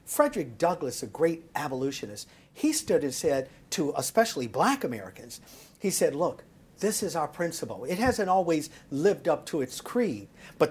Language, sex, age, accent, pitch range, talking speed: English, male, 50-69, American, 155-220 Hz, 165 wpm